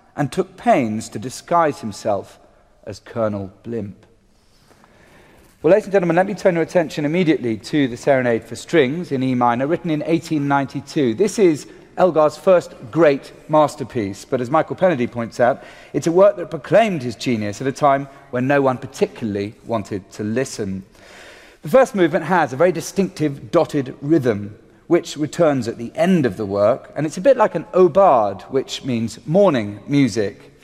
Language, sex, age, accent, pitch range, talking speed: English, male, 40-59, British, 115-170 Hz, 170 wpm